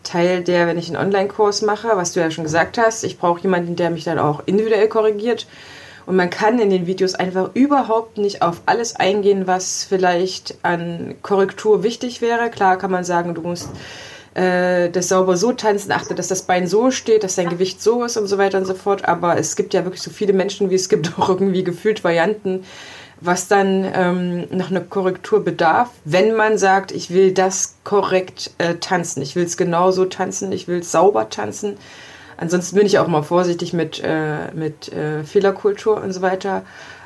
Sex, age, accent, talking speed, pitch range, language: female, 20-39, German, 200 wpm, 175-210 Hz, German